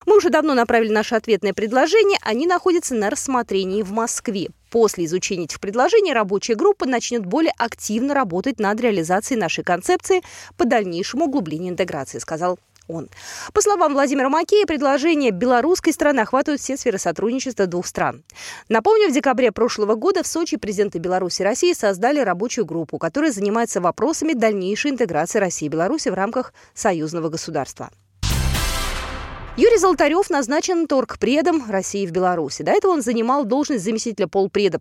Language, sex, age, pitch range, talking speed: Russian, female, 20-39, 190-305 Hz, 150 wpm